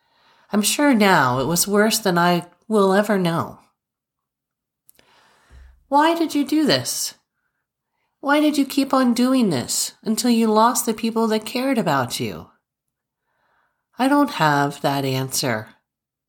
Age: 40-59